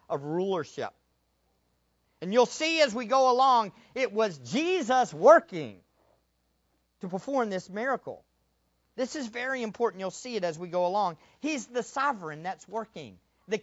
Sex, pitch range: male, 180-270 Hz